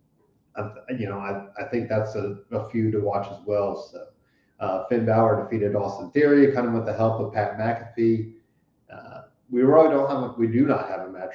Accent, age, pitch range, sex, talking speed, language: American, 30-49, 100-115 Hz, male, 205 wpm, English